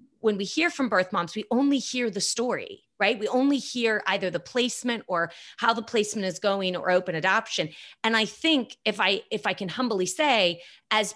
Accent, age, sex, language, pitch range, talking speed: American, 30-49, female, English, 180-235 Hz, 205 wpm